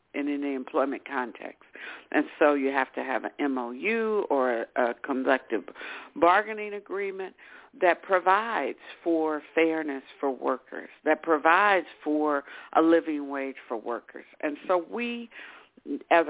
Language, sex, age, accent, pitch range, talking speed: English, female, 60-79, American, 155-200 Hz, 135 wpm